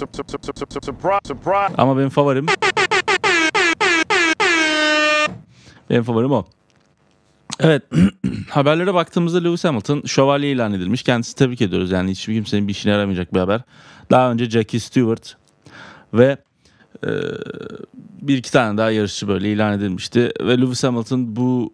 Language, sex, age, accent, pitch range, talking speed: Turkish, male, 30-49, native, 105-140 Hz, 120 wpm